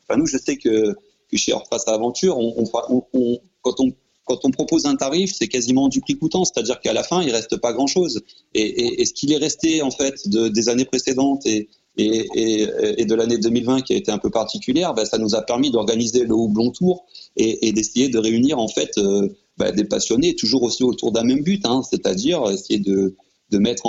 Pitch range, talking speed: 115-150 Hz, 235 wpm